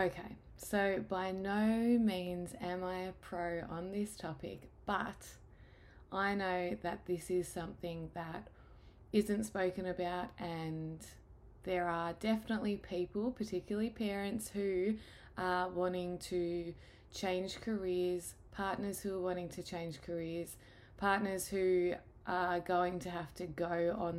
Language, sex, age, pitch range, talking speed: English, female, 20-39, 170-195 Hz, 130 wpm